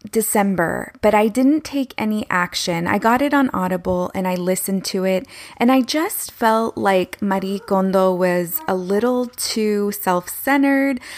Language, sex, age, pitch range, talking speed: English, female, 20-39, 185-230 Hz, 155 wpm